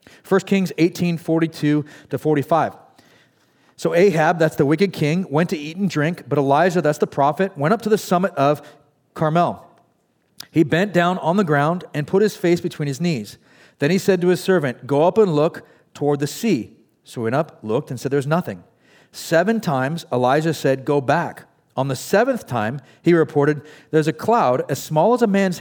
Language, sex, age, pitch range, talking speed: English, male, 40-59, 130-175 Hz, 195 wpm